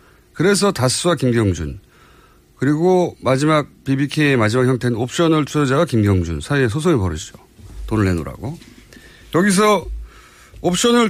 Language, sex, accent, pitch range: Korean, male, native, 100-165 Hz